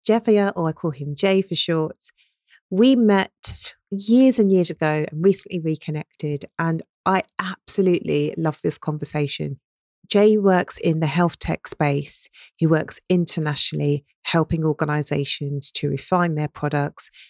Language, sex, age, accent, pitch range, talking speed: English, female, 40-59, British, 155-185 Hz, 135 wpm